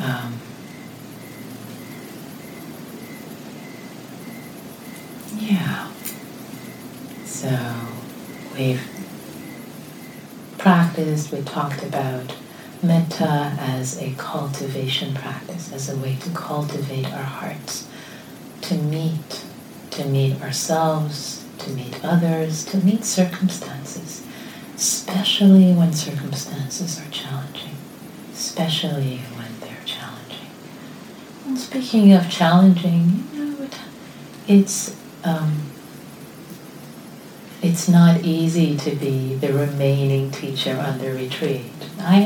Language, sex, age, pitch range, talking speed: English, female, 40-59, 135-180 Hz, 80 wpm